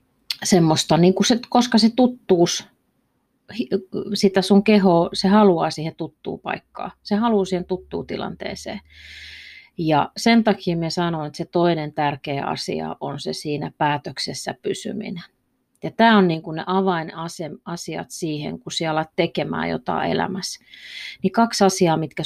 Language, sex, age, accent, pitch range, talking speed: Finnish, female, 30-49, native, 155-200 Hz, 135 wpm